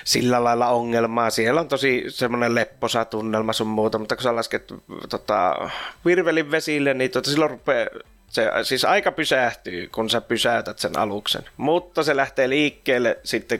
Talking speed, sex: 155 wpm, male